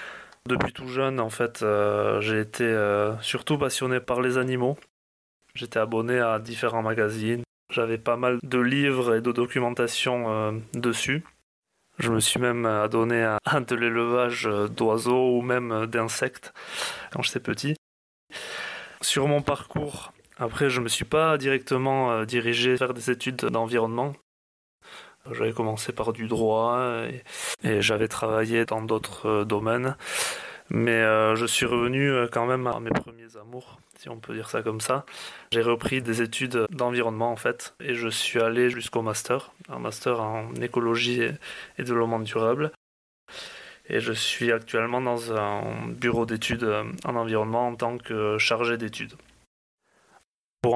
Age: 20-39